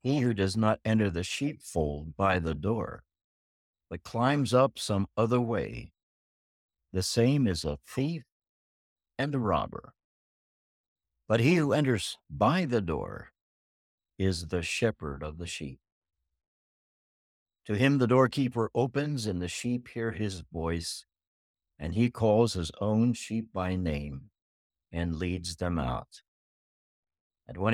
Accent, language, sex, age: American, English, male, 60-79